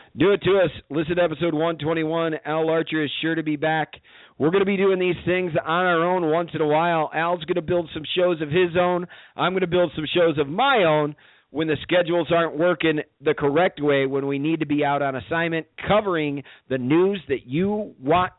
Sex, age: male, 40-59